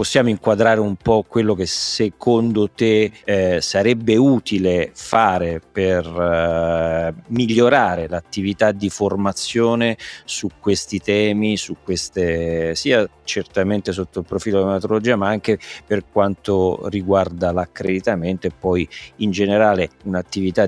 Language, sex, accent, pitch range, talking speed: Italian, male, native, 85-100 Hz, 120 wpm